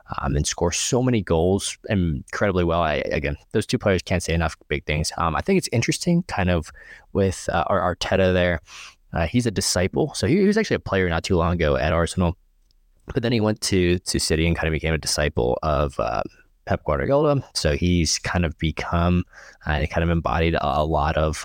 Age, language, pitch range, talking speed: 20-39, English, 80-100 Hz, 205 wpm